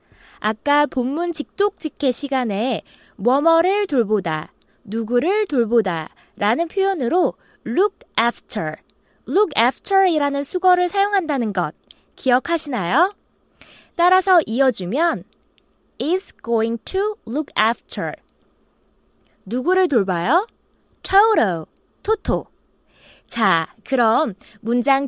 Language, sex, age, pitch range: Korean, female, 20-39, 225-370 Hz